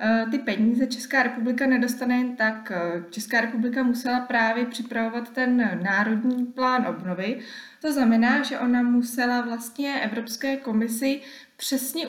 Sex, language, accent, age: female, Czech, native, 20-39